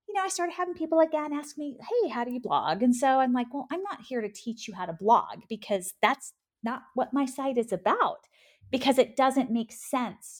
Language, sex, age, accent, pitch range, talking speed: English, female, 30-49, American, 210-295 Hz, 225 wpm